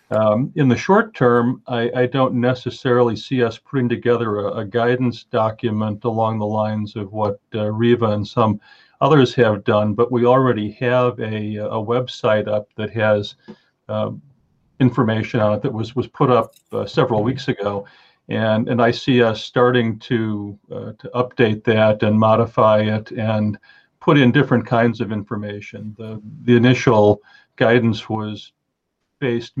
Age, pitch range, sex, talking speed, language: 50-69, 105-120 Hz, male, 160 wpm, English